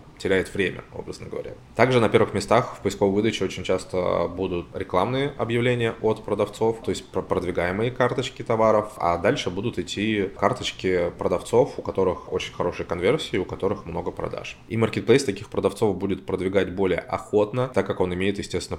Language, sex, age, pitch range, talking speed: Russian, male, 20-39, 90-110 Hz, 165 wpm